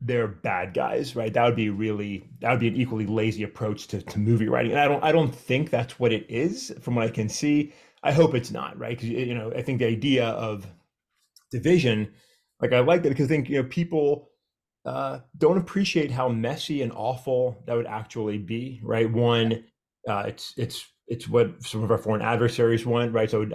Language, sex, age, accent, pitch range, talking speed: English, male, 30-49, American, 105-125 Hz, 215 wpm